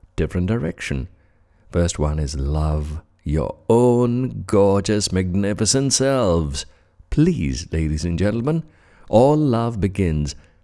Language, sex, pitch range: English, male, 80-115 Hz